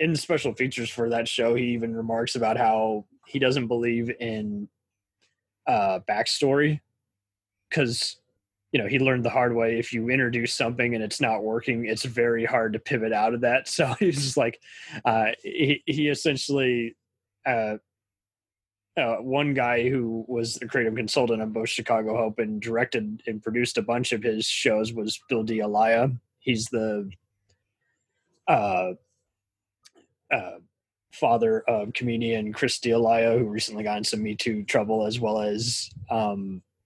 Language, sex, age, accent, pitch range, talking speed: English, male, 20-39, American, 110-120 Hz, 155 wpm